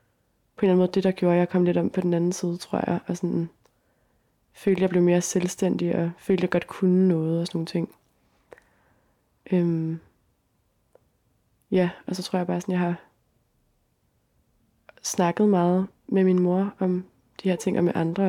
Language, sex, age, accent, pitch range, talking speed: Danish, female, 20-39, native, 170-185 Hz, 185 wpm